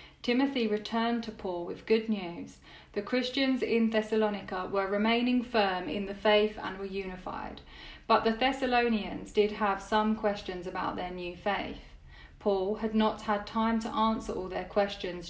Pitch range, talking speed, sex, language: 190-225 Hz, 160 wpm, female, English